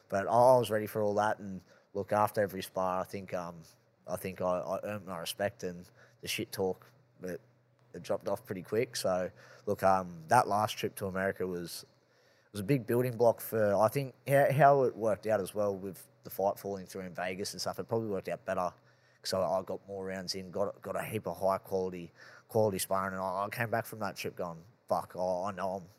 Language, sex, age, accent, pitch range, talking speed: English, male, 20-39, Australian, 95-110 Hz, 230 wpm